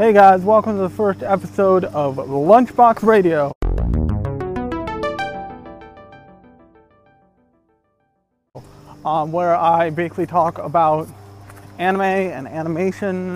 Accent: American